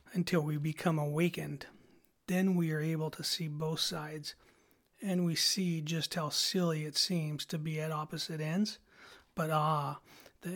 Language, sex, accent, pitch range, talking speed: English, male, American, 155-180 Hz, 160 wpm